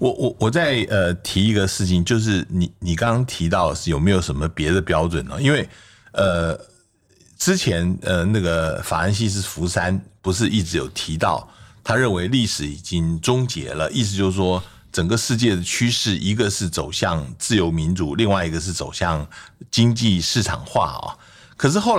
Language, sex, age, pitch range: Chinese, male, 60-79, 85-110 Hz